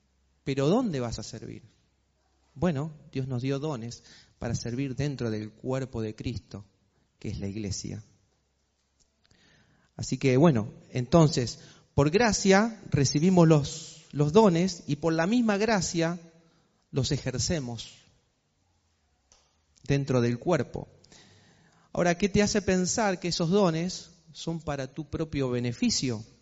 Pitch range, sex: 120-165 Hz, male